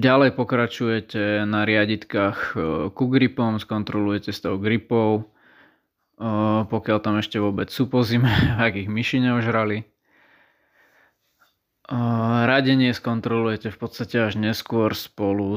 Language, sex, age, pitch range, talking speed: Slovak, male, 20-39, 105-115 Hz, 110 wpm